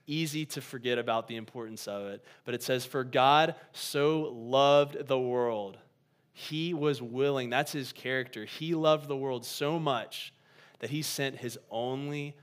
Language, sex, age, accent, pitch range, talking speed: English, male, 20-39, American, 115-145 Hz, 165 wpm